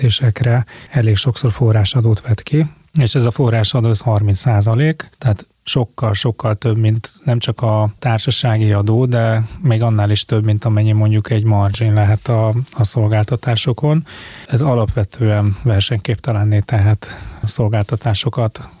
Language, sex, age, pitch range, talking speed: Hungarian, male, 20-39, 110-125 Hz, 130 wpm